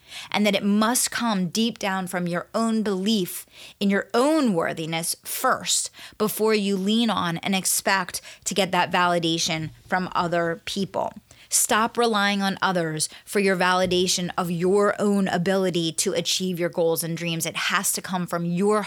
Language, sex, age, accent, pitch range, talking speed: English, female, 20-39, American, 185-220 Hz, 165 wpm